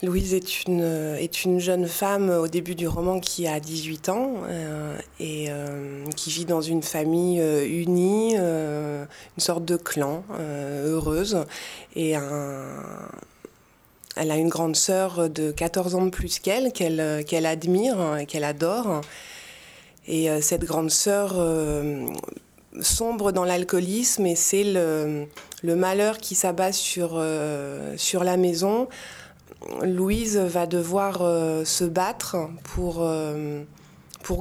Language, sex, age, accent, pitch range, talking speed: French, female, 20-39, French, 155-185 Hz, 140 wpm